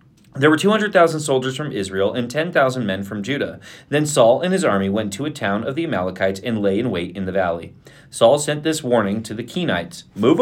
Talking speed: 220 wpm